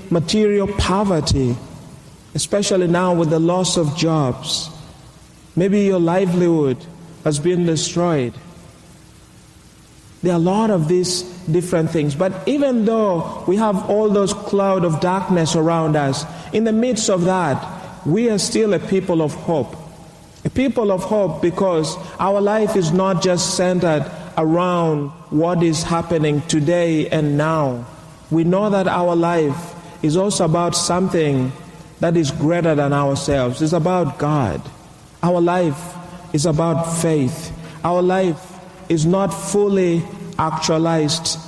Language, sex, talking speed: English, male, 135 wpm